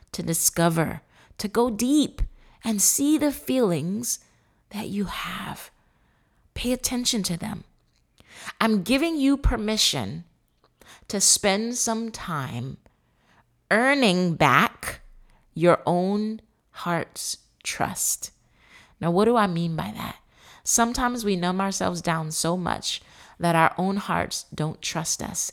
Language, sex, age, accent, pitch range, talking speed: English, female, 30-49, American, 165-215 Hz, 120 wpm